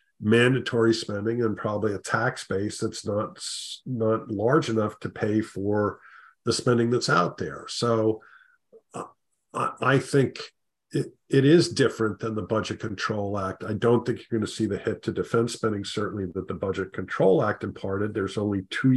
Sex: male